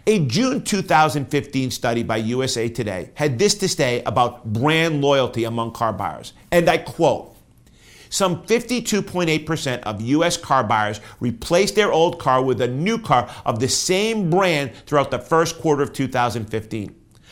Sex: male